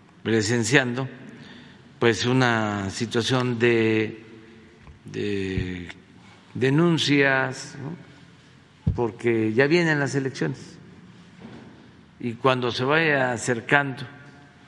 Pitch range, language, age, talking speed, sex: 110-145 Hz, Spanish, 50-69, 75 wpm, male